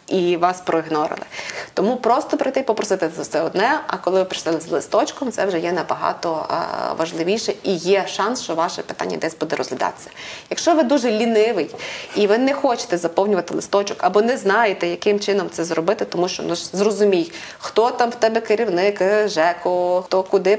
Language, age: Ukrainian, 20-39